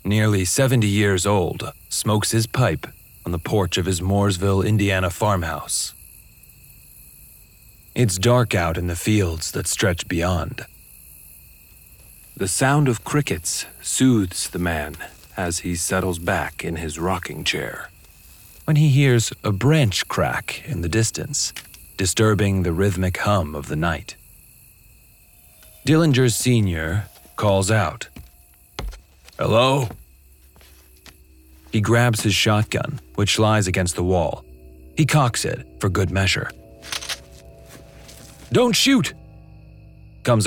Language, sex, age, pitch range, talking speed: English, male, 40-59, 80-110 Hz, 115 wpm